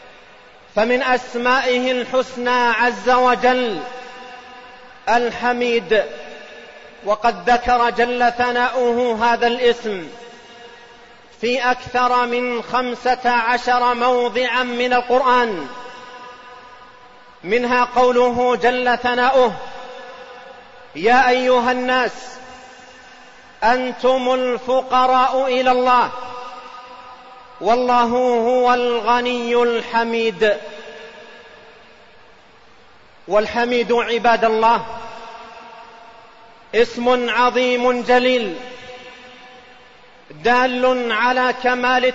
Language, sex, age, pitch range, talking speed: Arabic, male, 40-59, 235-255 Hz, 65 wpm